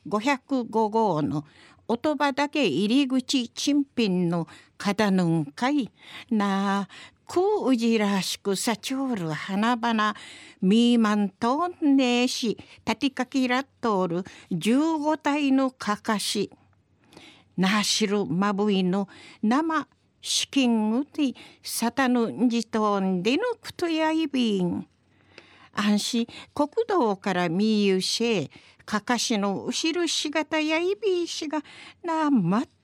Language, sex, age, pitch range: Japanese, female, 50-69, 205-290 Hz